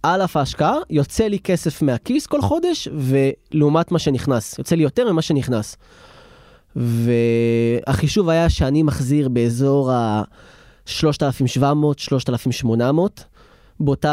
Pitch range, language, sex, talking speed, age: 130-170 Hz, Hebrew, male, 100 wpm, 20-39